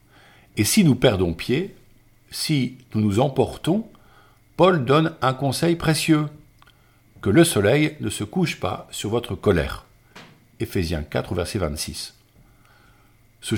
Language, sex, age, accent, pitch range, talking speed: French, male, 50-69, French, 105-135 Hz, 135 wpm